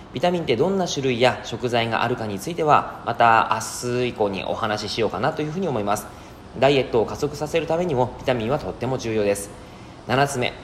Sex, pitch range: male, 110-155 Hz